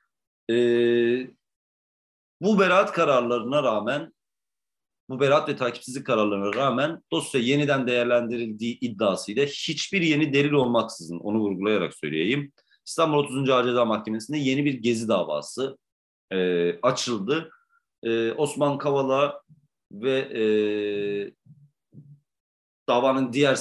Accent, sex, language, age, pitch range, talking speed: native, male, Turkish, 40-59, 110-145 Hz, 100 wpm